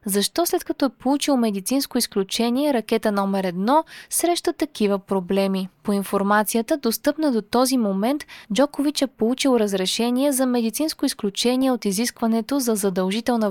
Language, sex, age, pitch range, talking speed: Bulgarian, female, 20-39, 205-265 Hz, 135 wpm